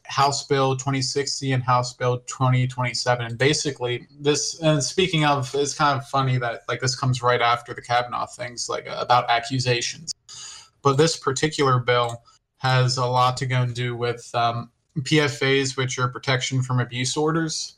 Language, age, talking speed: English, 20-39, 165 wpm